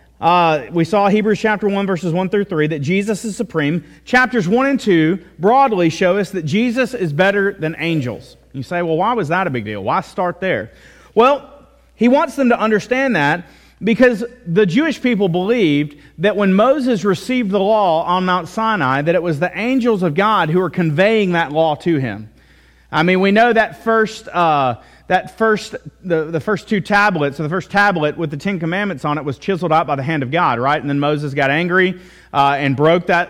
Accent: American